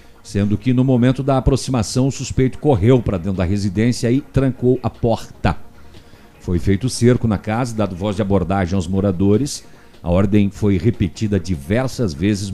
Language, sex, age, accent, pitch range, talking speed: Portuguese, male, 50-69, Brazilian, 100-130 Hz, 165 wpm